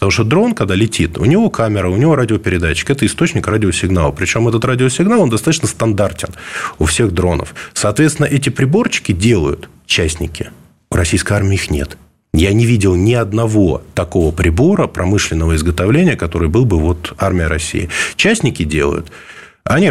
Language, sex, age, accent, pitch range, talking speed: Russian, male, 20-39, native, 85-120 Hz, 155 wpm